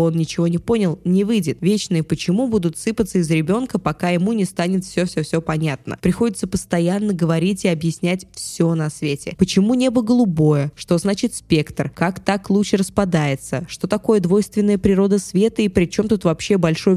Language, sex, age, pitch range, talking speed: Russian, female, 20-39, 165-195 Hz, 165 wpm